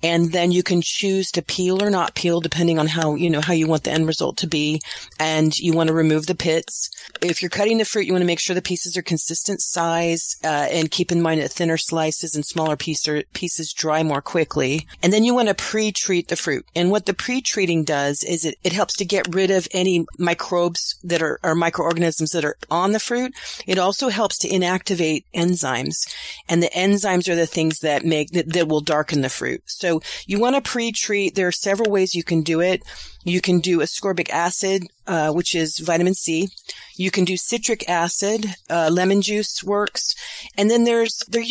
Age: 40-59